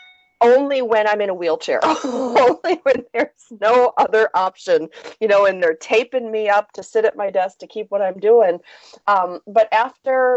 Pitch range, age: 170-220 Hz, 40-59